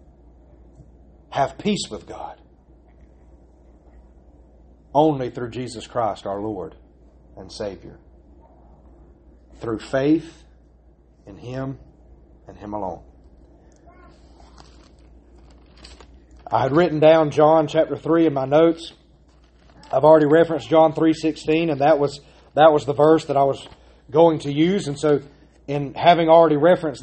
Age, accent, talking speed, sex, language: 40-59, American, 120 wpm, male, English